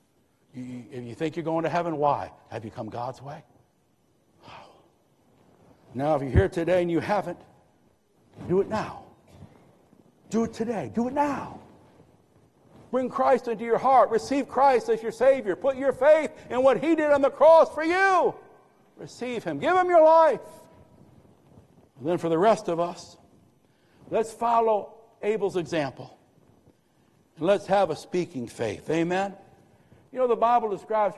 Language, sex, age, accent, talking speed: English, male, 60-79, American, 155 wpm